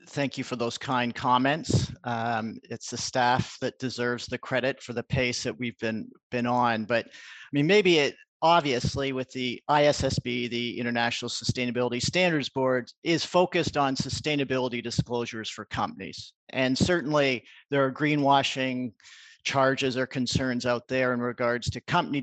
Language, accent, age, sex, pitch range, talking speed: English, American, 50-69, male, 120-145 Hz, 155 wpm